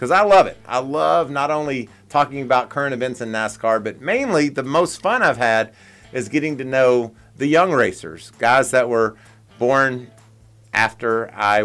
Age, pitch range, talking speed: 40-59, 110-155 Hz, 175 wpm